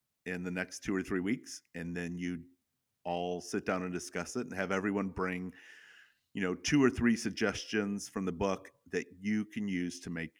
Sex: male